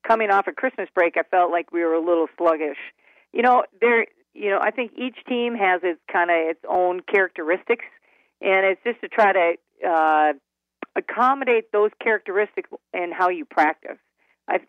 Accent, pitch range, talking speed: American, 165-205 Hz, 185 wpm